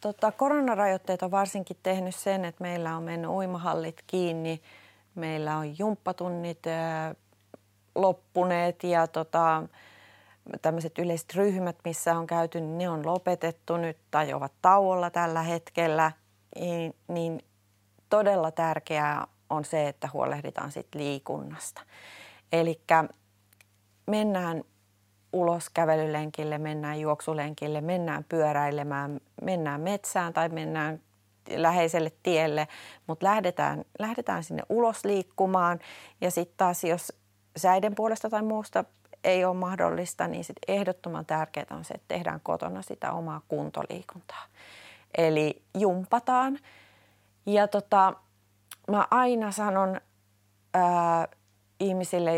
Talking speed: 105 wpm